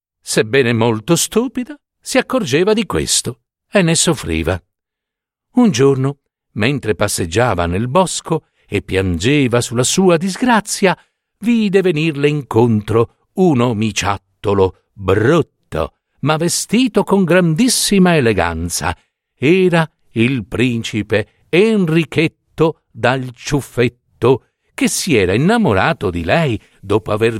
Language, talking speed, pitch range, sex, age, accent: Italian, 100 wpm, 110-170 Hz, male, 60-79, native